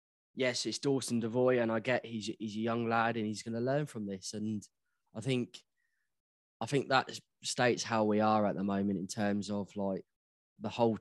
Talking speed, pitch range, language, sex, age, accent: 205 wpm, 105-120 Hz, English, male, 10-29, British